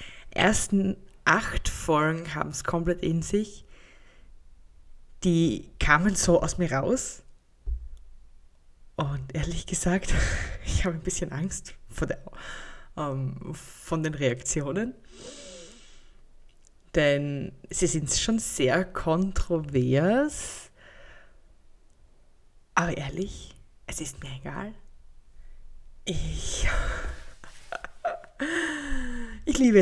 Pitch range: 145-205 Hz